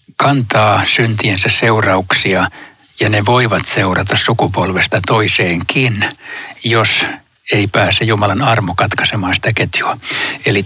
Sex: male